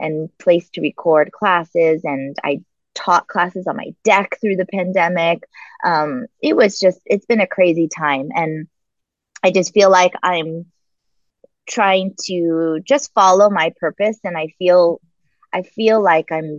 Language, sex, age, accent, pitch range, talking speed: English, female, 20-39, American, 160-210 Hz, 155 wpm